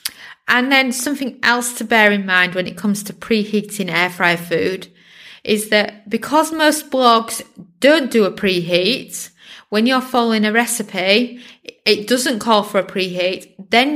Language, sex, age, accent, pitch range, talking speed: English, female, 30-49, British, 190-235 Hz, 160 wpm